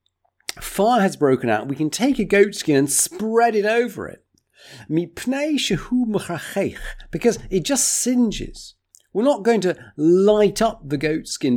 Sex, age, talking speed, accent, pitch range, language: male, 50-69, 135 wpm, British, 145-220 Hz, English